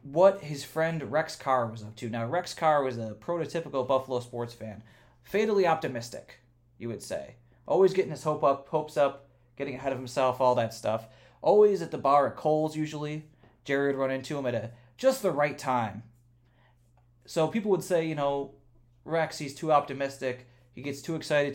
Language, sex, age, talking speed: English, male, 20-39, 190 wpm